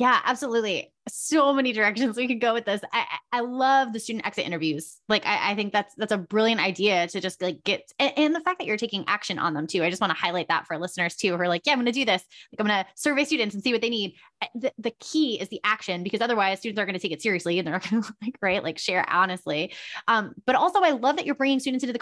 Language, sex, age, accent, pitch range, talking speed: English, female, 20-39, American, 185-245 Hz, 285 wpm